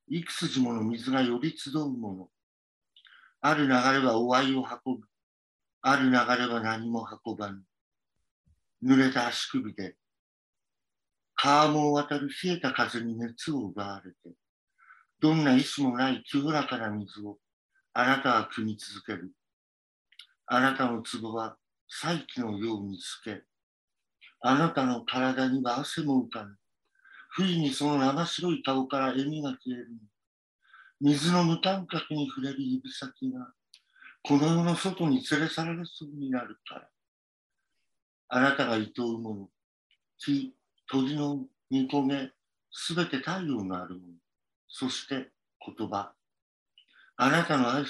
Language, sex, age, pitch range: English, male, 50-69, 110-155 Hz